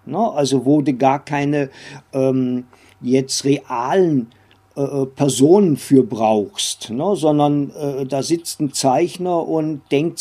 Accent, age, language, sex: German, 50-69, German, male